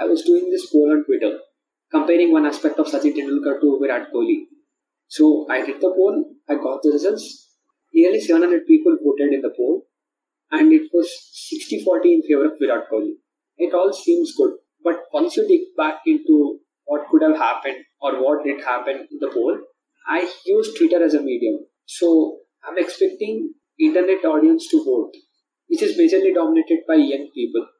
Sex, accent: male, Indian